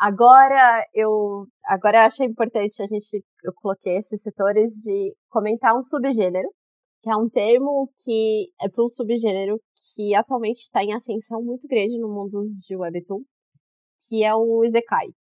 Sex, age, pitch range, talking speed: female, 20-39, 200-245 Hz, 155 wpm